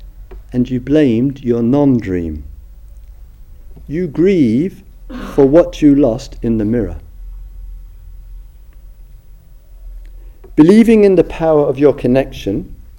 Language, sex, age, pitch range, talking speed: English, male, 50-69, 80-130 Hz, 95 wpm